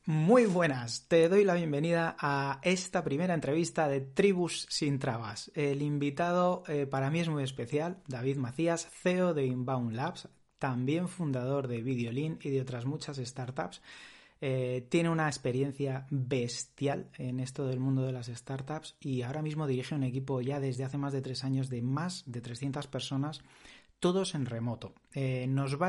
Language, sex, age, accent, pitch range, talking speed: Spanish, male, 30-49, Spanish, 130-155 Hz, 170 wpm